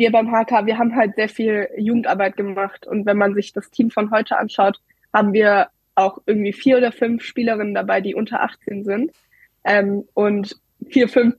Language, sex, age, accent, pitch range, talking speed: German, female, 20-39, German, 200-230 Hz, 190 wpm